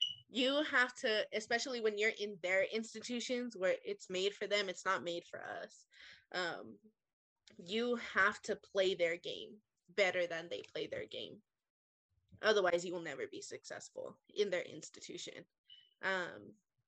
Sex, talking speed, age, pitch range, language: female, 150 wpm, 20-39, 180-230 Hz, English